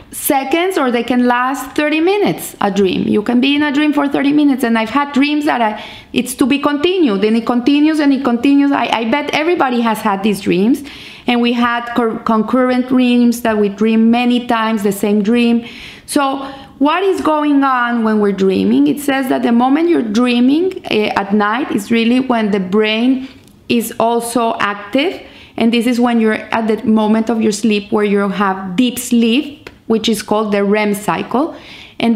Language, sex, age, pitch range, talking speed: English, female, 30-49, 215-270 Hz, 190 wpm